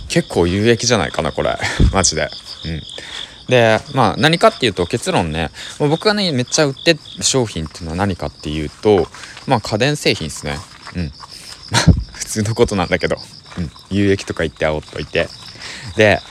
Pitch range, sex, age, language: 80-120 Hz, male, 20-39, Japanese